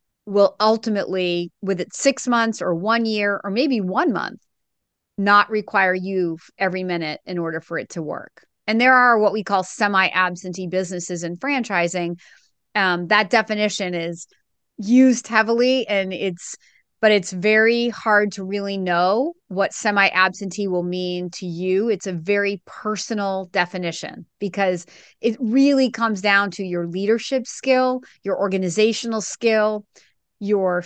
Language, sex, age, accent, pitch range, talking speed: English, female, 30-49, American, 180-215 Hz, 140 wpm